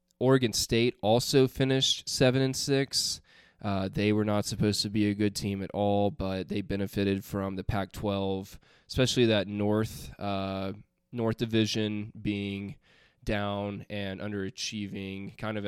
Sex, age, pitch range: male, 20-39, 100-120 Hz